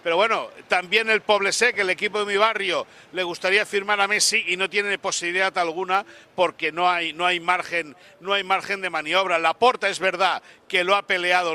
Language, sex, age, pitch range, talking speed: Spanish, male, 60-79, 175-205 Hz, 205 wpm